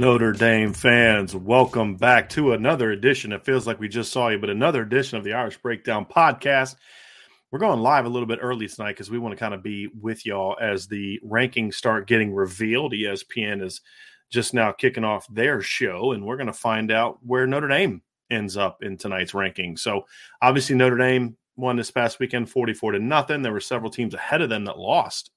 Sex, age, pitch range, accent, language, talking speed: male, 30-49, 110-130 Hz, American, English, 210 wpm